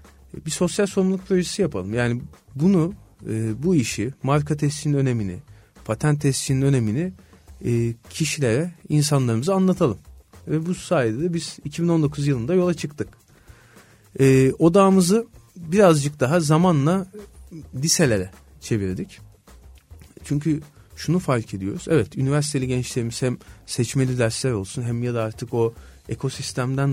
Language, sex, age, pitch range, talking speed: Turkish, male, 40-59, 115-165 Hz, 110 wpm